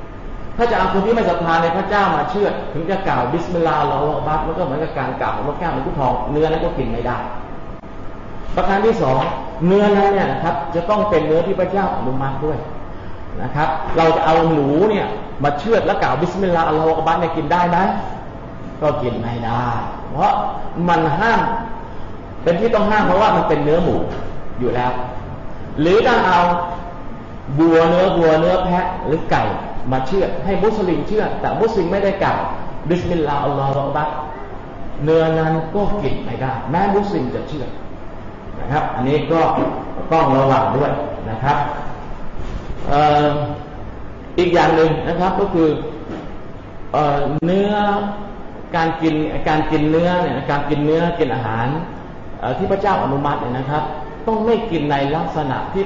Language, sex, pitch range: Thai, male, 135-175 Hz